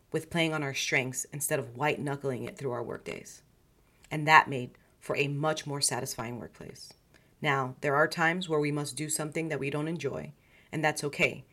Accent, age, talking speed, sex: American, 40-59, 195 wpm, female